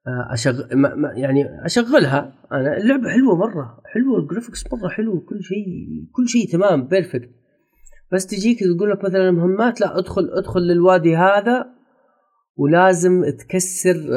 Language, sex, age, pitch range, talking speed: Arabic, male, 30-49, 140-200 Hz, 130 wpm